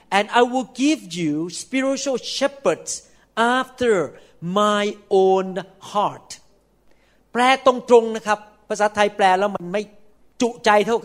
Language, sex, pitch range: Thai, male, 195-255 Hz